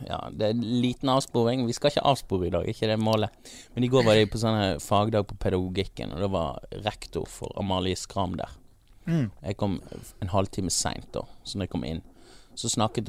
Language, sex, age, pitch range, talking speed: English, male, 30-49, 95-120 Hz, 195 wpm